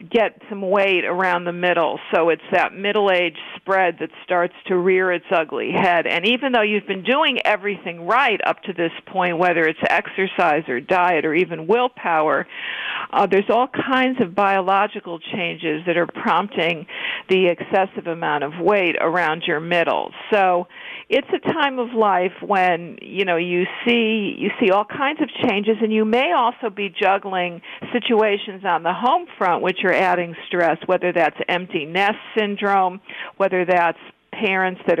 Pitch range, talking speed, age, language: 175-220 Hz, 165 wpm, 50-69, English